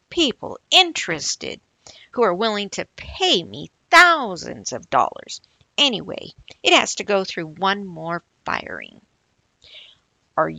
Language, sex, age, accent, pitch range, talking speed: English, female, 50-69, American, 185-285 Hz, 120 wpm